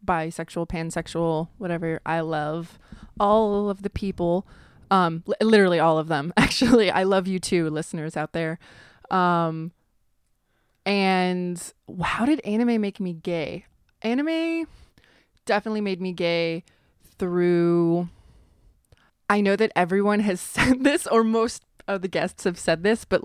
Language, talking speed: English, 135 wpm